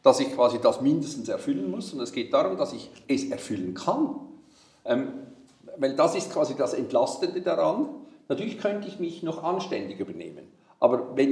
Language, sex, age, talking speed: German, male, 50-69, 175 wpm